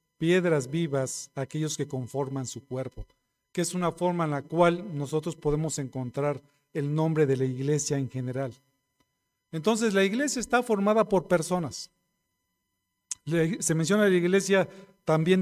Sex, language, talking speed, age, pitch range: male, Spanish, 140 wpm, 50-69, 140-180 Hz